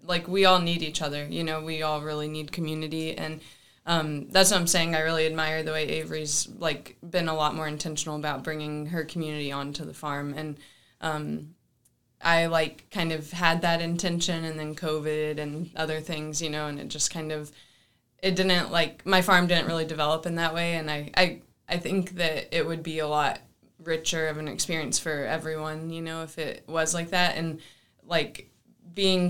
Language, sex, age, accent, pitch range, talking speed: English, female, 20-39, American, 155-170 Hz, 200 wpm